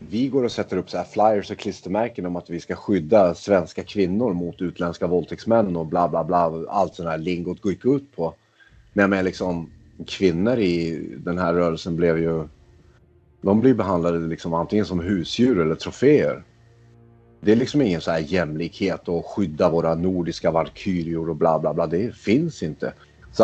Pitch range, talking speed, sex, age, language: 80-100 Hz, 175 wpm, male, 30-49, Swedish